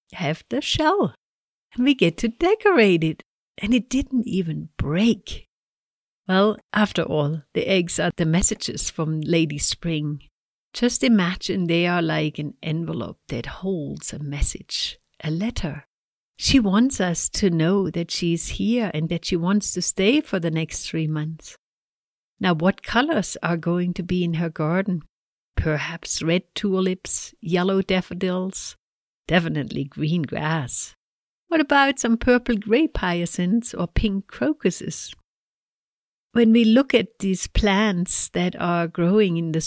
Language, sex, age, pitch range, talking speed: English, female, 60-79, 160-210 Hz, 145 wpm